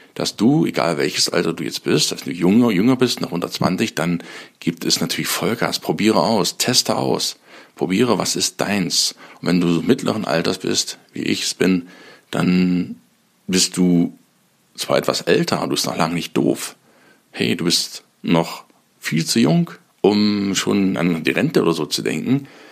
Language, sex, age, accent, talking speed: German, male, 50-69, German, 175 wpm